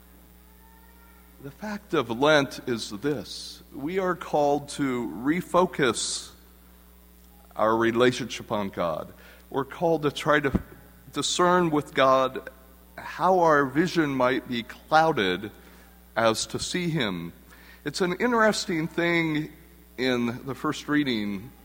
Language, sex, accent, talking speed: English, male, American, 115 wpm